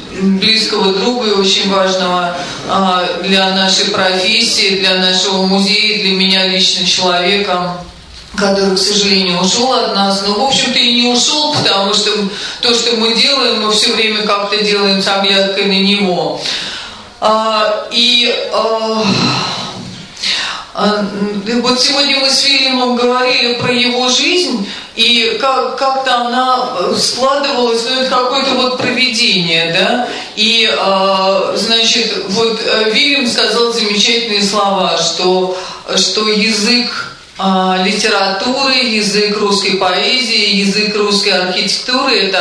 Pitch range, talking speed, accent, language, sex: 190-235 Hz, 115 wpm, native, Russian, female